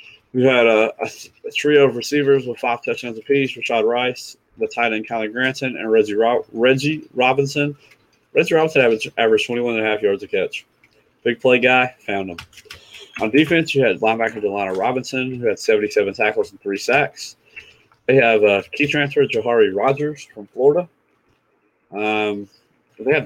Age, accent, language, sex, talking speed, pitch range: 30-49, American, English, male, 170 wpm, 110-160 Hz